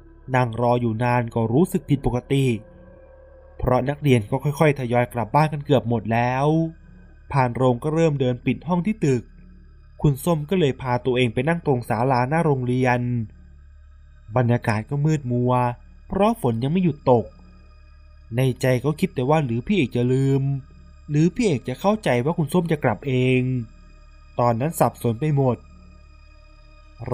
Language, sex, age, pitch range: Thai, male, 20-39, 115-140 Hz